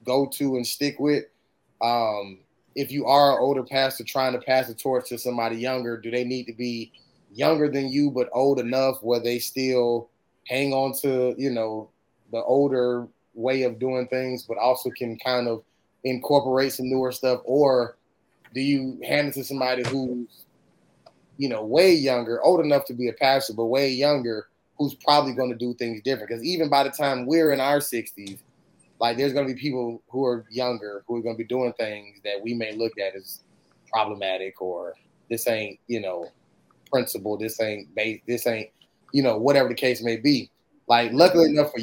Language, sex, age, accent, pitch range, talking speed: English, male, 20-39, American, 115-135 Hz, 190 wpm